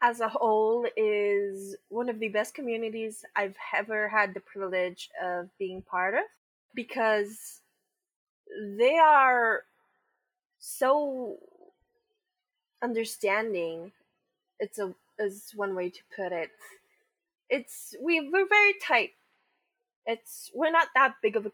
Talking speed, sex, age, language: 120 wpm, female, 20-39, English